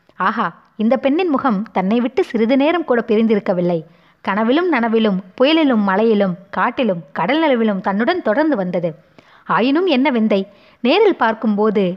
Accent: native